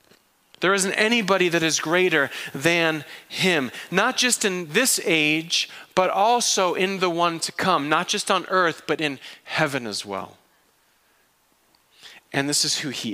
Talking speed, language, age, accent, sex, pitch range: 155 wpm, English, 30-49, American, male, 120-165 Hz